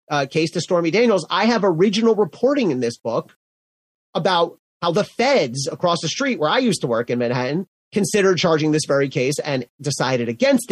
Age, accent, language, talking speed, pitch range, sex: 30-49, American, English, 190 wpm, 130-180 Hz, male